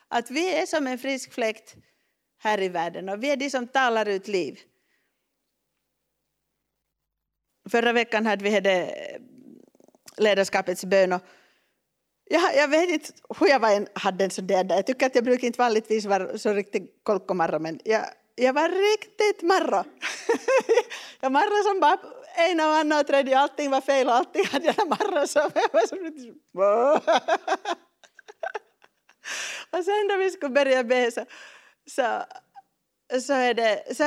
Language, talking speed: Finnish, 155 wpm